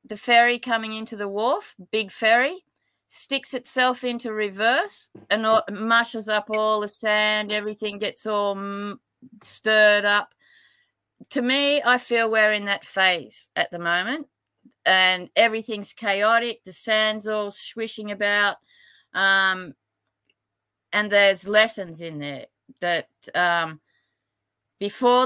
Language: English